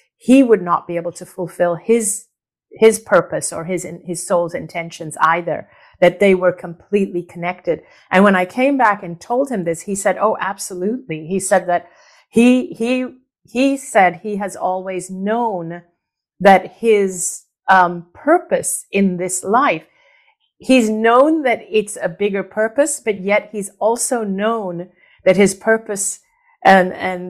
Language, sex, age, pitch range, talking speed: English, female, 40-59, 175-220 Hz, 150 wpm